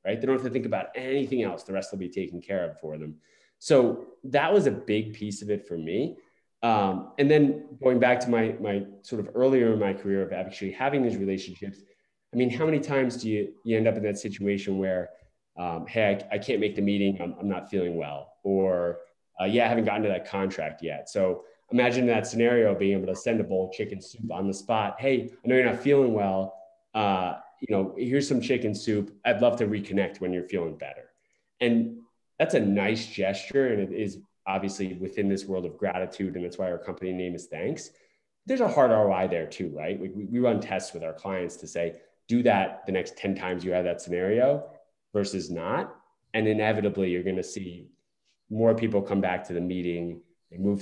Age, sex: 20-39, male